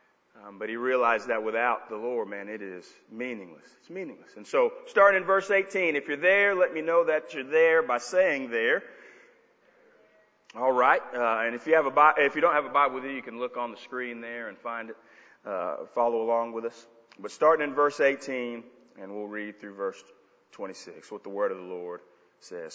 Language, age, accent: English, 30-49, American